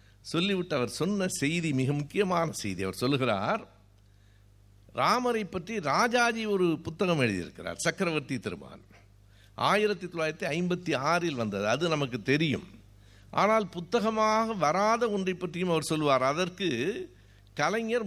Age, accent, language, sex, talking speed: 60-79, native, Tamil, male, 105 wpm